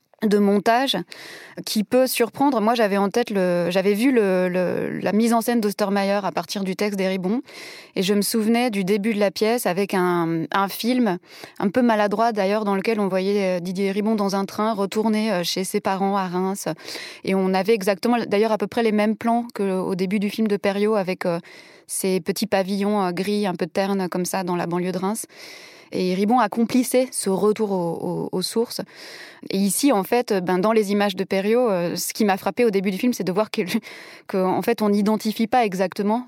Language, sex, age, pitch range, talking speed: French, female, 20-39, 190-220 Hz, 205 wpm